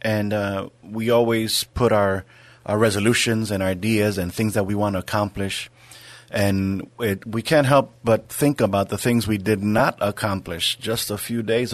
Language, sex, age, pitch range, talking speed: English, male, 30-49, 100-115 Hz, 180 wpm